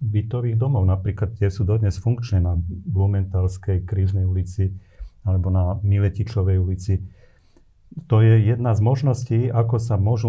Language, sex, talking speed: Slovak, male, 135 wpm